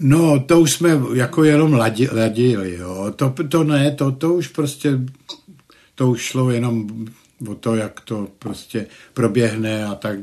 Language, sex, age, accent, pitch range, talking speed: Czech, male, 60-79, native, 105-125 Hz, 160 wpm